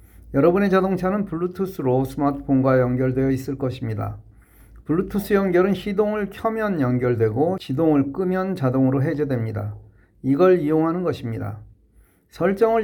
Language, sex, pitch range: Korean, male, 110-170 Hz